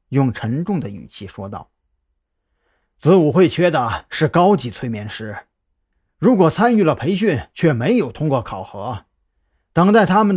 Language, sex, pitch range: Chinese, male, 105-170 Hz